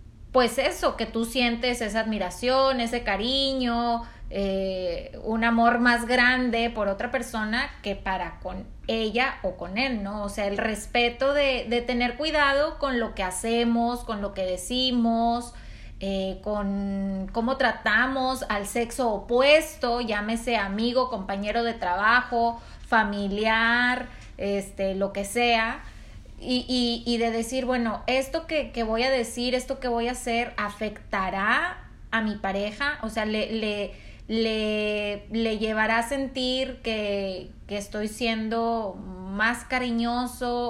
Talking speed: 140 wpm